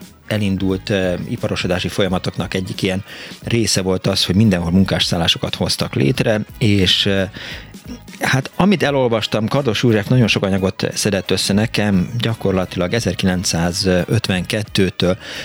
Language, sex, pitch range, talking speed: Hungarian, male, 90-110 Hz, 105 wpm